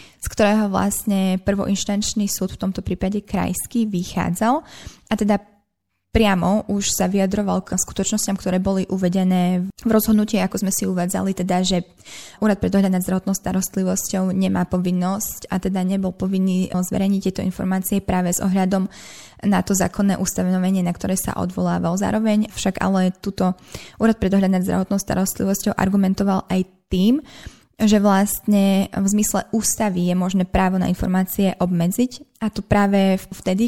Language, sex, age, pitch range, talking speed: Slovak, female, 20-39, 185-210 Hz, 150 wpm